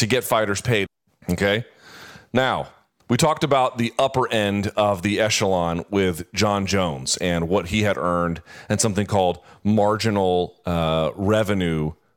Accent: American